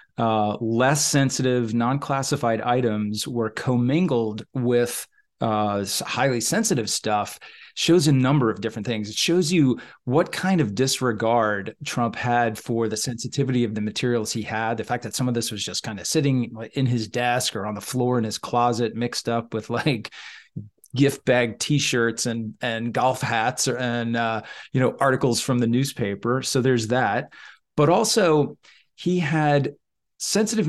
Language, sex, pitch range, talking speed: English, male, 115-145 Hz, 160 wpm